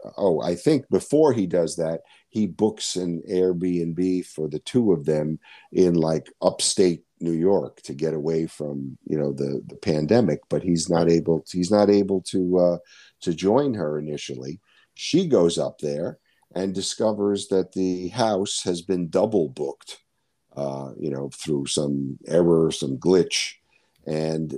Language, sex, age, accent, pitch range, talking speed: English, male, 50-69, American, 75-95 Hz, 160 wpm